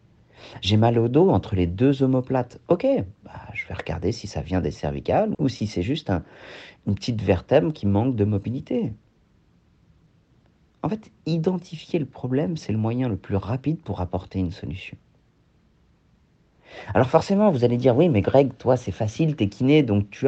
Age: 40-59